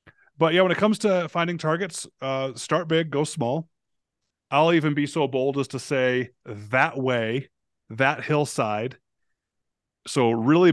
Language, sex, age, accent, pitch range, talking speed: English, male, 30-49, American, 115-145 Hz, 150 wpm